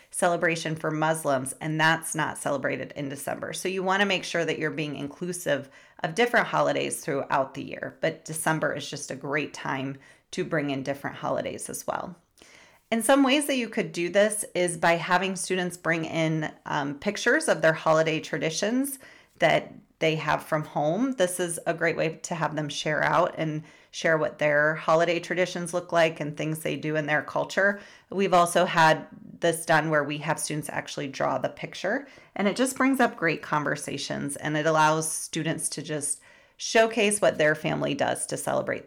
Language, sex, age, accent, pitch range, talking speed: English, female, 30-49, American, 155-195 Hz, 190 wpm